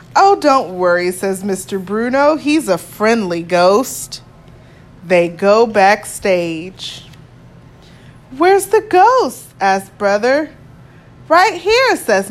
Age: 20-39